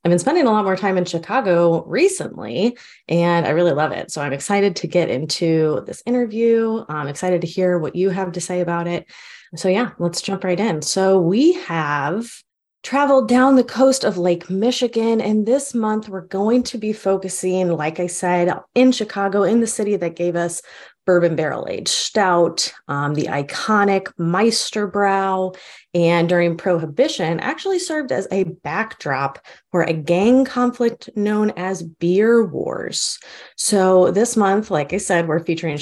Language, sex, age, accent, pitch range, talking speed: English, female, 20-39, American, 165-210 Hz, 170 wpm